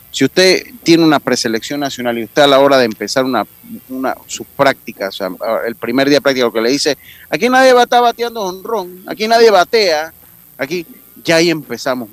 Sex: male